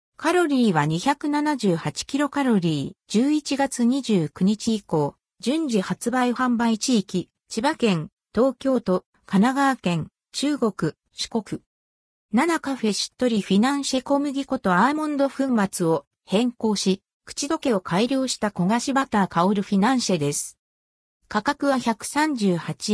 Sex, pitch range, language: female, 185-270 Hz, Japanese